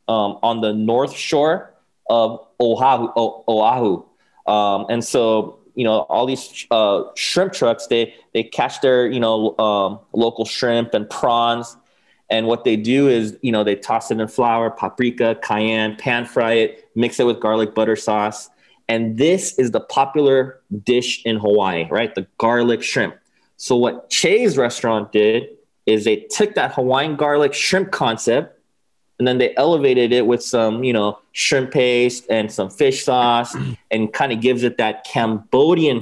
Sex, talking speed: male, 165 wpm